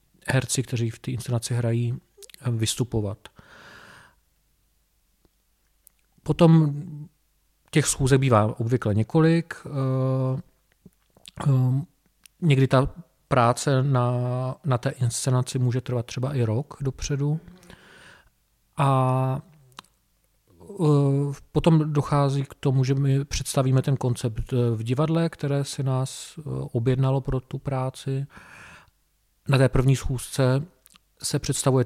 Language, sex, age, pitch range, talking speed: Czech, male, 40-59, 125-140 Hz, 95 wpm